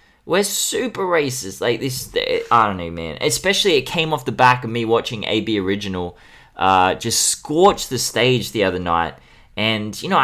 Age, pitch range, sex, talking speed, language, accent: 20-39, 100-125 Hz, male, 180 wpm, English, Australian